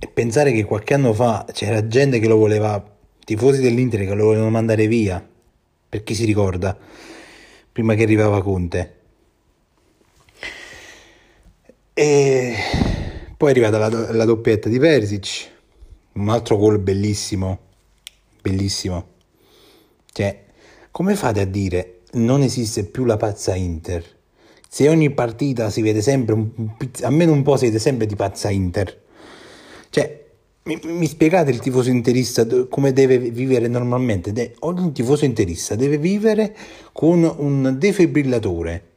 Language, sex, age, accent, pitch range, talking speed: Italian, male, 30-49, native, 100-130 Hz, 130 wpm